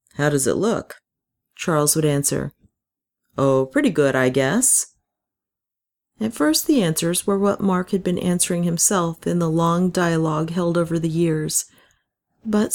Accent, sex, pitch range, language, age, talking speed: American, female, 140-185 Hz, English, 40-59, 150 wpm